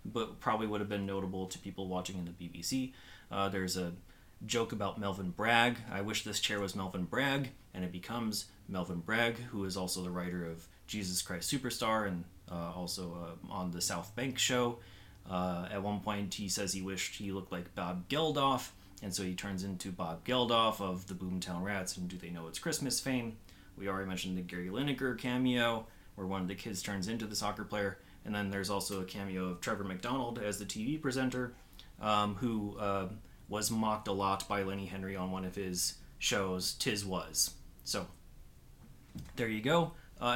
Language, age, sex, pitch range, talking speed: English, 30-49, male, 90-115 Hz, 195 wpm